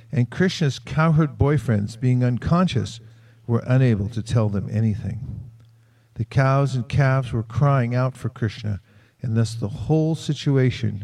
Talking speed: 140 wpm